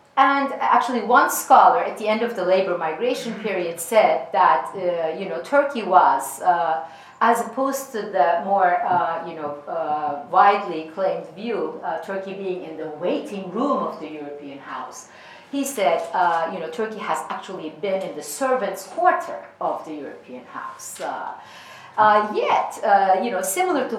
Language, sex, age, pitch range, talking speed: English, female, 50-69, 175-235 Hz, 170 wpm